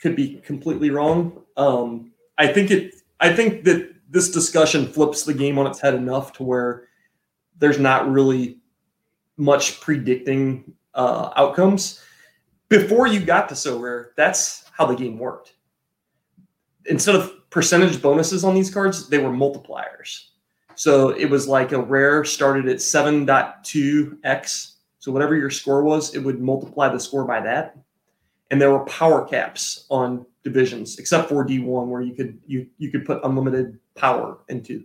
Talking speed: 160 wpm